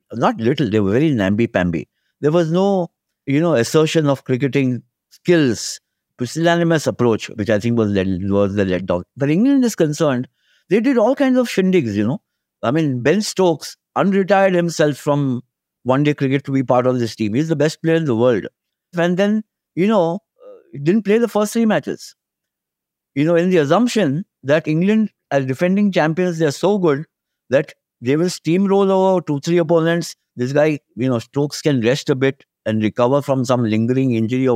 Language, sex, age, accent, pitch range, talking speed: English, male, 60-79, Indian, 125-175 Hz, 190 wpm